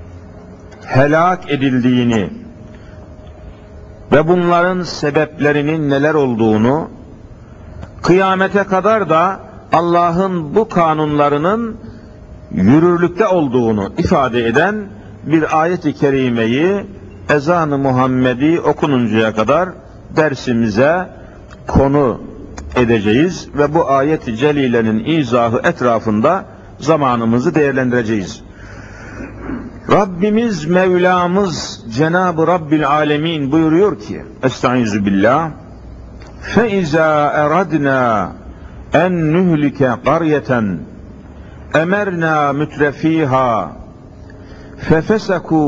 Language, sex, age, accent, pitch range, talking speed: Turkish, male, 60-79, native, 115-165 Hz, 70 wpm